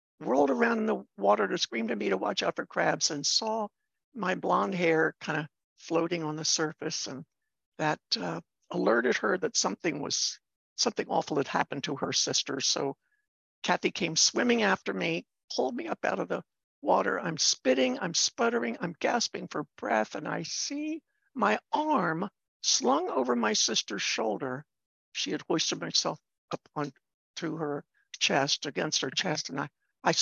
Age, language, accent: 60-79, English, American